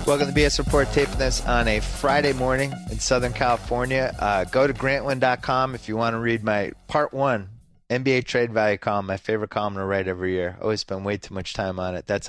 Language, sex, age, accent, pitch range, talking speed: English, male, 30-49, American, 90-120 Hz, 225 wpm